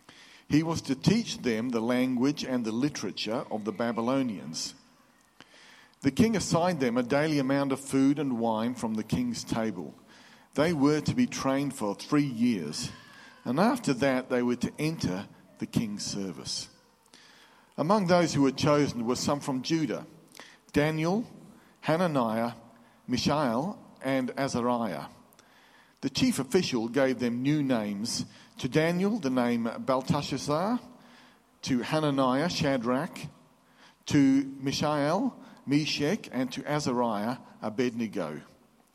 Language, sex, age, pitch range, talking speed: English, male, 50-69, 120-160 Hz, 125 wpm